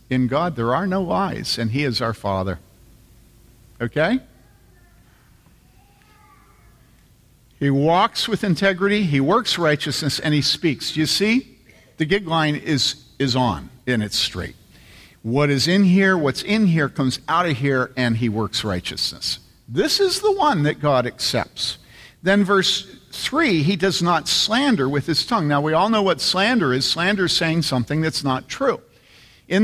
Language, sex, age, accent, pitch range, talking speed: English, male, 50-69, American, 125-175 Hz, 160 wpm